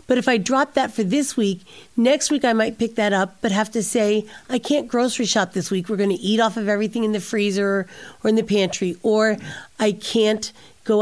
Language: English